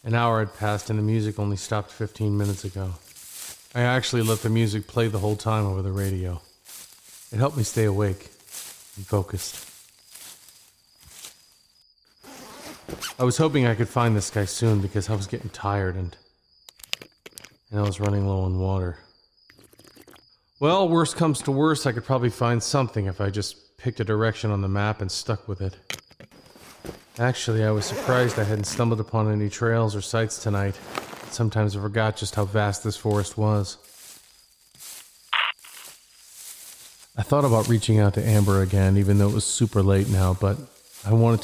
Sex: male